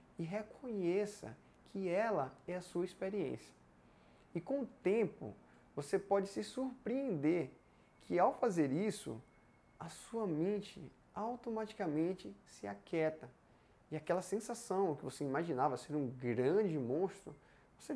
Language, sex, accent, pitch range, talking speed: Portuguese, male, Brazilian, 135-195 Hz, 125 wpm